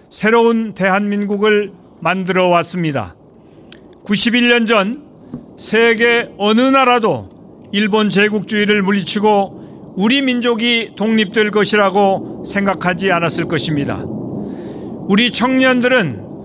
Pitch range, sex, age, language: 190-240 Hz, male, 40-59, Korean